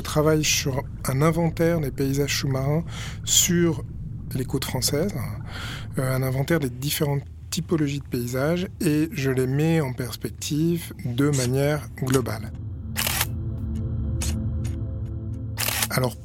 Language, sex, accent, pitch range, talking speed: French, male, French, 115-150 Hz, 105 wpm